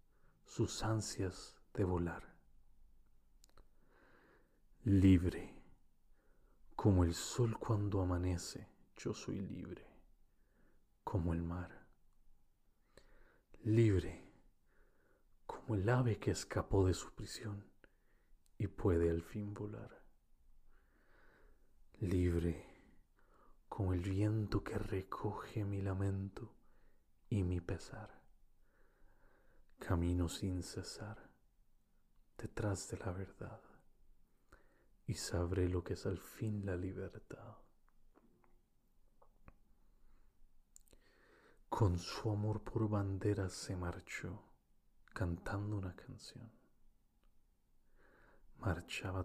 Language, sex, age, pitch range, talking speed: English, male, 40-59, 90-105 Hz, 85 wpm